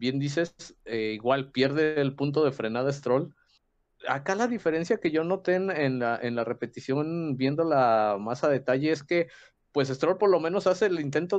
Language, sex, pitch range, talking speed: Spanish, male, 120-160 Hz, 185 wpm